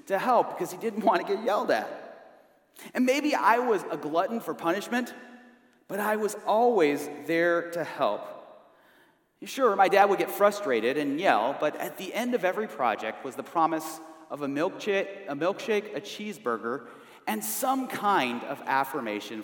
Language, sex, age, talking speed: English, male, 30-49, 165 wpm